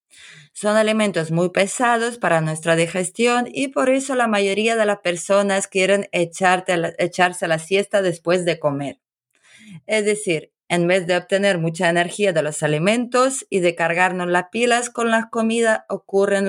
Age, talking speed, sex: 20-39, 155 wpm, female